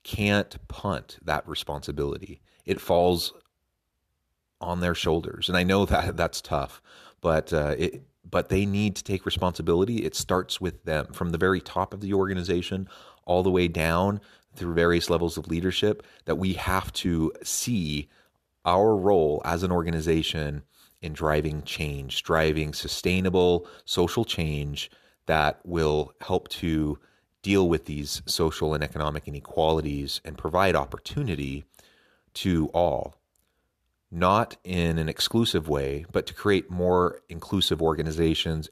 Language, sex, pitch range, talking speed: English, male, 75-90 Hz, 135 wpm